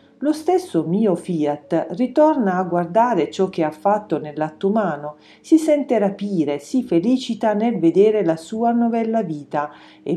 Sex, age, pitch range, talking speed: female, 40-59, 160-230 Hz, 150 wpm